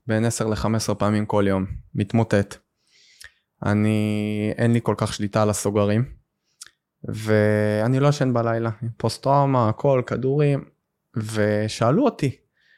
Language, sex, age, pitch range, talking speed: Hebrew, male, 20-39, 110-140 Hz, 115 wpm